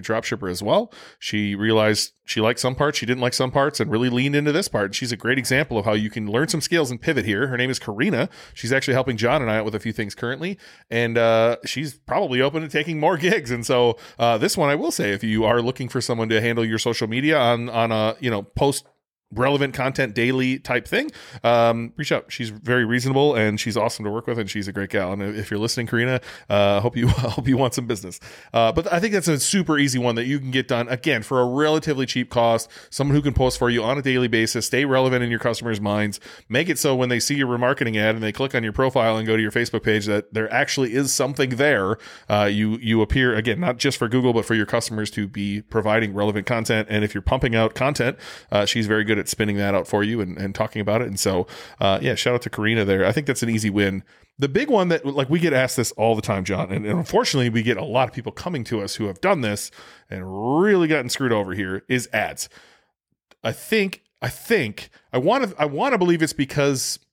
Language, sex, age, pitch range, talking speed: English, male, 30-49, 110-135 Hz, 255 wpm